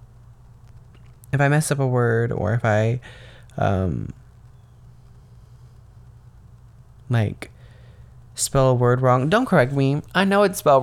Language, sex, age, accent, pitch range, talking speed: English, male, 20-39, American, 120-130 Hz, 120 wpm